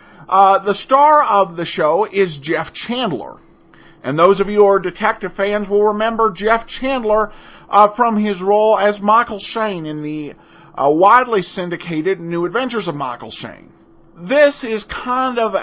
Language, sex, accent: English, male, American